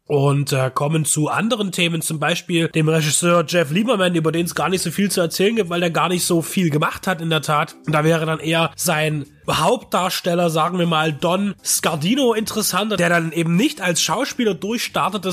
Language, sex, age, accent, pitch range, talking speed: German, male, 30-49, German, 155-190 Hz, 210 wpm